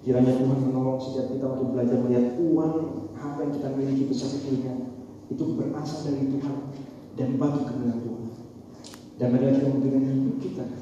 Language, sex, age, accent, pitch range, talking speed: Indonesian, male, 30-49, native, 115-130 Hz, 155 wpm